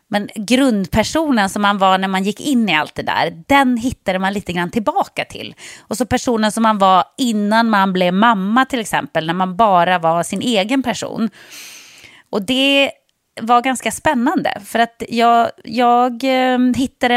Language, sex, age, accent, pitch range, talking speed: English, female, 30-49, Swedish, 185-255 Hz, 170 wpm